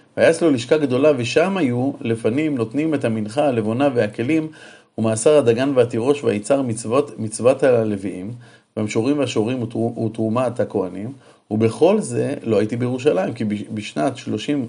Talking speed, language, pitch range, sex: 130 wpm, Hebrew, 110-145 Hz, male